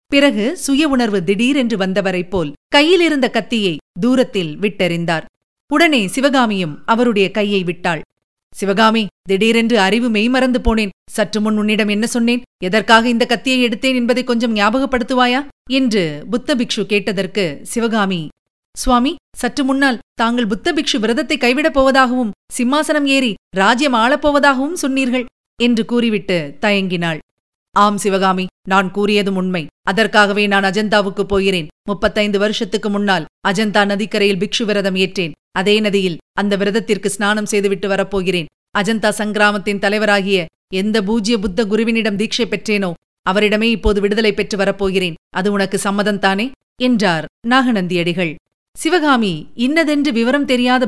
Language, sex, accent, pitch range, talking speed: Tamil, female, native, 195-245 Hz, 115 wpm